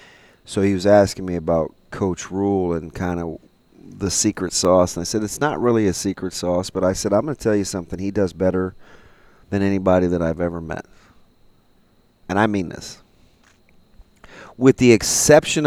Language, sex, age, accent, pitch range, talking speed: English, male, 40-59, American, 90-115 Hz, 185 wpm